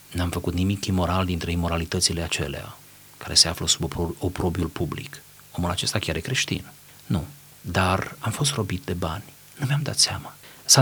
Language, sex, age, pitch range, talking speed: Romanian, male, 30-49, 85-115 Hz, 165 wpm